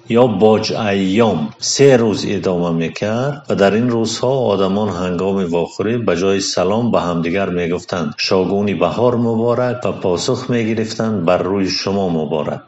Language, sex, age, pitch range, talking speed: Persian, male, 50-69, 100-125 Hz, 150 wpm